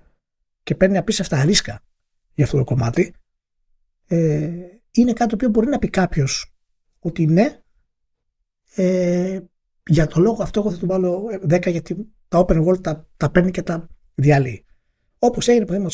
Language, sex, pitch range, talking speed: Greek, male, 140-190 Hz, 155 wpm